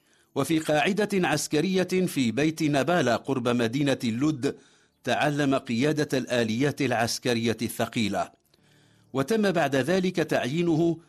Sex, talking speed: male, 95 wpm